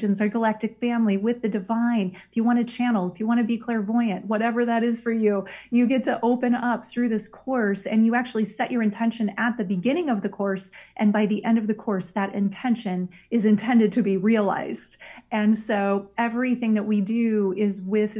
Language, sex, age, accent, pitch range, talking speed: English, female, 30-49, American, 210-245 Hz, 210 wpm